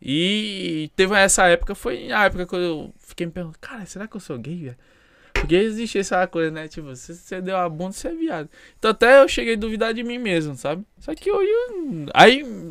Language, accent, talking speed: Portuguese, Brazilian, 225 wpm